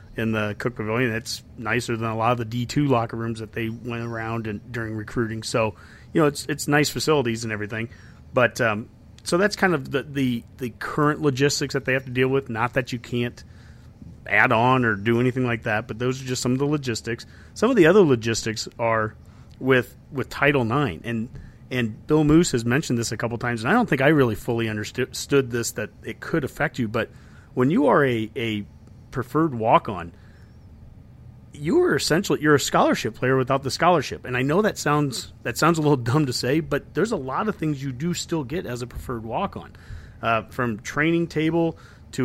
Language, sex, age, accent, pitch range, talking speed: English, male, 40-59, American, 115-145 Hz, 215 wpm